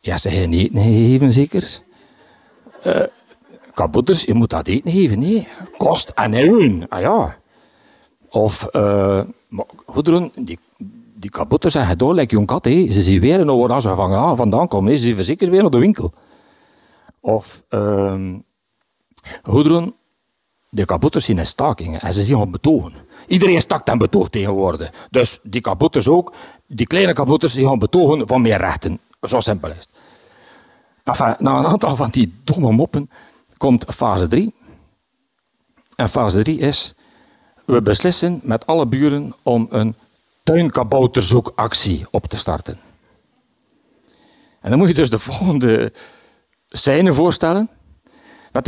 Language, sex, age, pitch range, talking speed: Dutch, male, 60-79, 110-170 Hz, 150 wpm